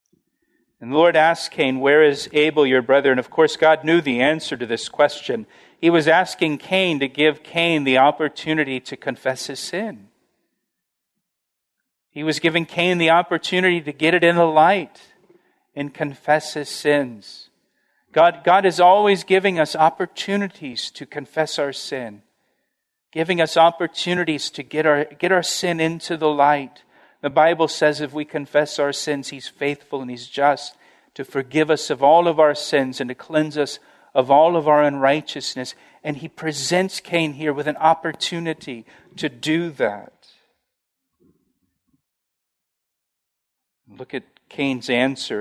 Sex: male